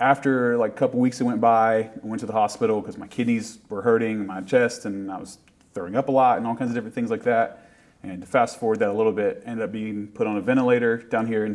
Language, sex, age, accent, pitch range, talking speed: English, male, 30-49, American, 100-125 Hz, 275 wpm